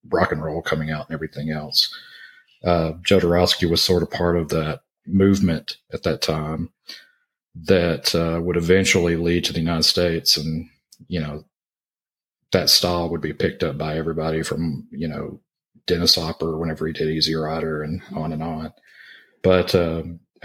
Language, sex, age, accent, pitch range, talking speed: English, male, 40-59, American, 80-95 Hz, 165 wpm